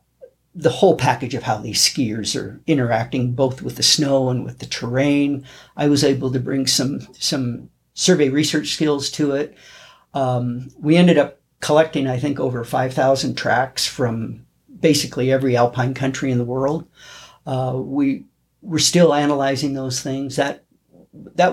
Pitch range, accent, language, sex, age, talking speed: 130-150 Hz, American, English, male, 50-69, 155 wpm